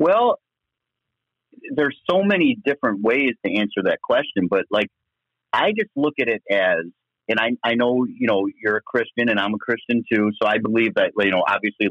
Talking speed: 195 wpm